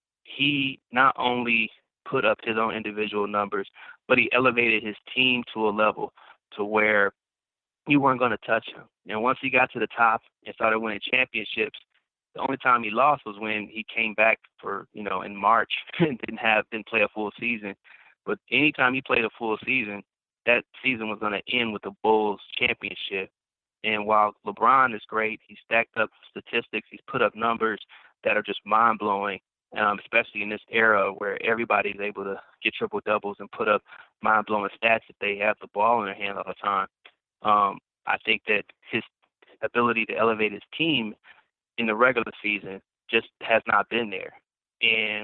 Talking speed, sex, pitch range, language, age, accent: 190 wpm, male, 105-115 Hz, English, 20-39, American